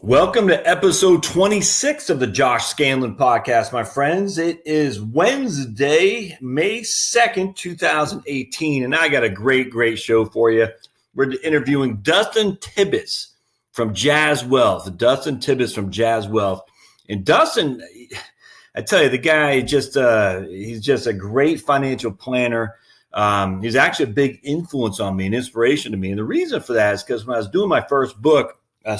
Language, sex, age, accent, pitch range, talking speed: English, male, 40-59, American, 110-150 Hz, 170 wpm